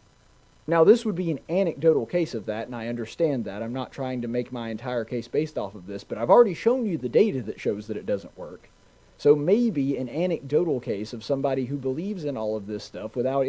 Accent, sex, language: American, male, English